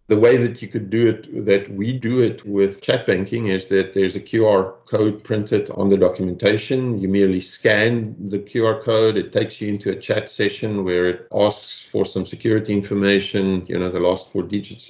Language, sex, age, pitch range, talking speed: English, male, 50-69, 100-120 Hz, 200 wpm